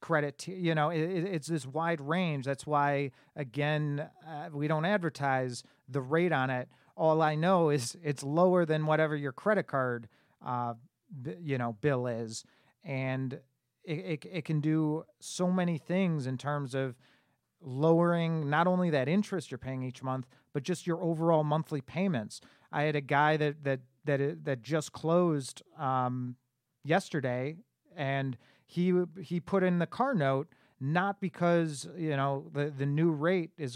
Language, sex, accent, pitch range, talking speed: English, male, American, 140-170 Hz, 170 wpm